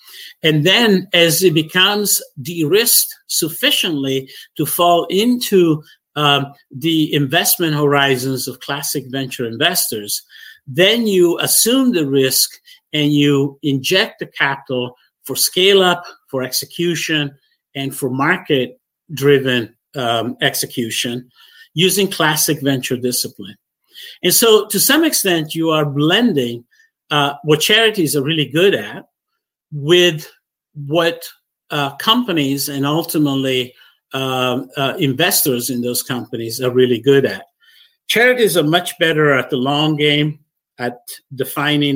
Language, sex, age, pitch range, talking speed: English, male, 50-69, 135-170 Hz, 115 wpm